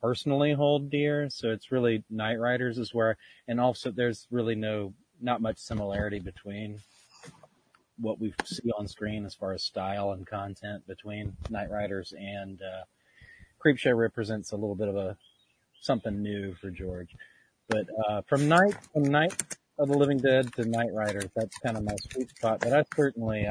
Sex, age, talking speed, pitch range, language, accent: male, 30-49, 175 wpm, 100-120 Hz, English, American